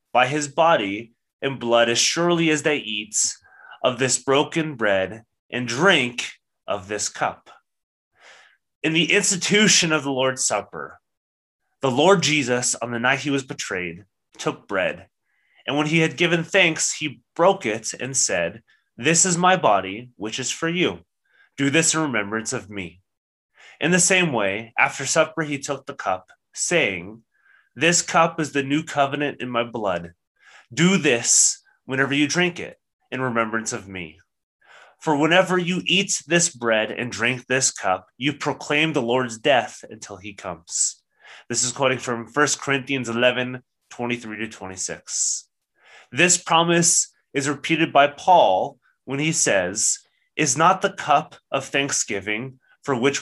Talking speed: 155 wpm